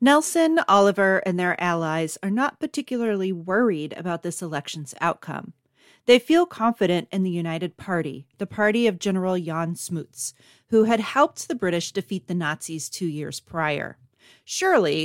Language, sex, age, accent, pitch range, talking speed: English, female, 40-59, American, 165-210 Hz, 150 wpm